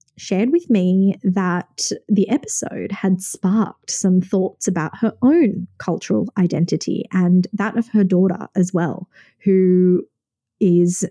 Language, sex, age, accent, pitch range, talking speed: English, female, 20-39, Australian, 180-215 Hz, 130 wpm